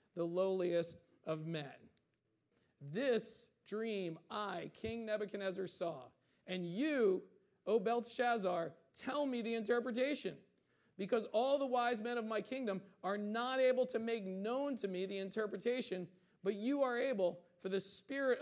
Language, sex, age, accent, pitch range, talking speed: English, male, 40-59, American, 175-230 Hz, 140 wpm